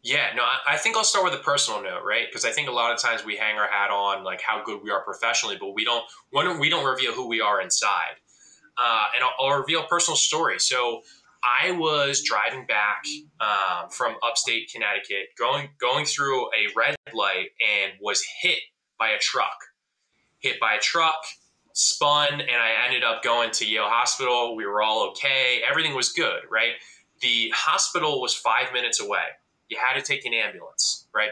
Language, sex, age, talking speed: English, male, 10-29, 195 wpm